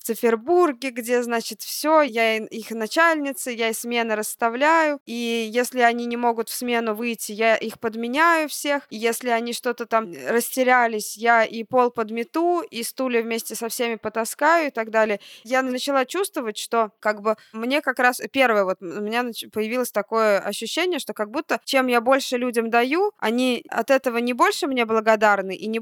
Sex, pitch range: female, 220-270 Hz